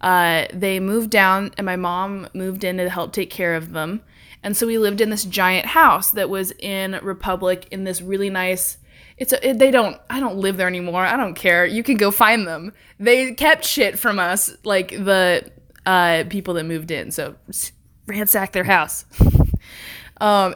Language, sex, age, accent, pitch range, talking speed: English, female, 20-39, American, 180-220 Hz, 190 wpm